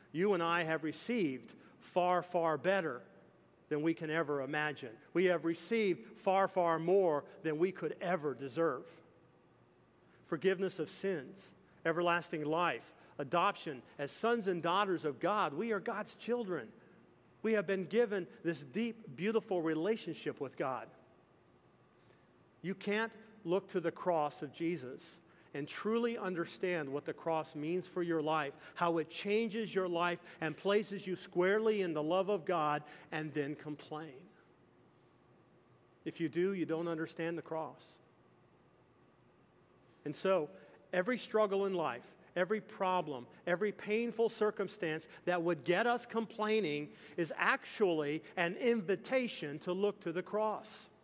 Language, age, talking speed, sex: English, 40-59, 140 wpm, male